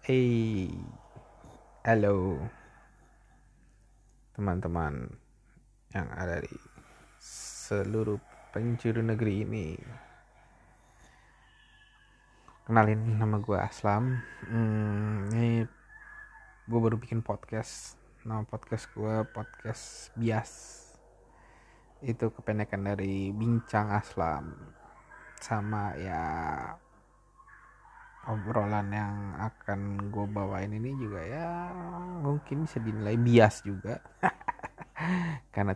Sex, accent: male, native